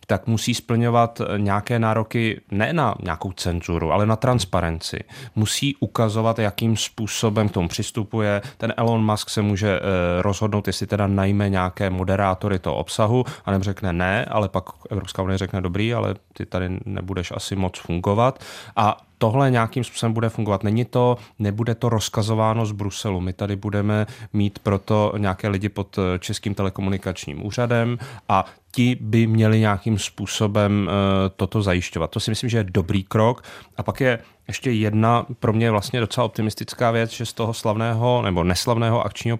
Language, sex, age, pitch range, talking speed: Czech, male, 30-49, 100-115 Hz, 160 wpm